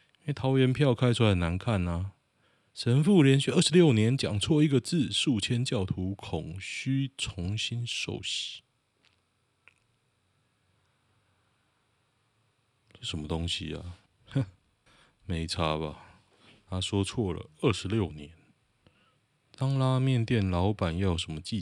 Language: Chinese